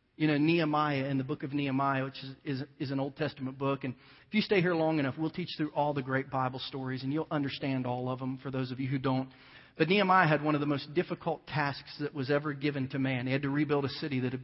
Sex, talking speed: male, 275 wpm